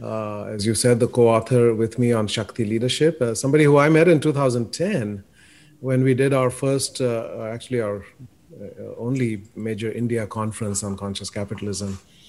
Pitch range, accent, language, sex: 110-130 Hz, Indian, English, male